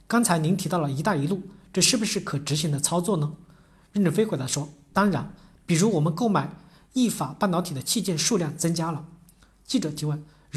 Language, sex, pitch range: Chinese, male, 150-200 Hz